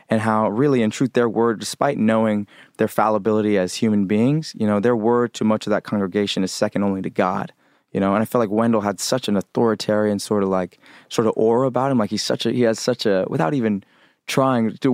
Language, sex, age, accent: English, male, 20-39, American